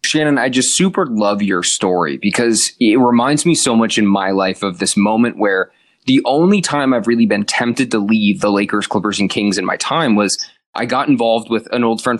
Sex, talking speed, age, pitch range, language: male, 220 wpm, 20-39, 105-145 Hz, English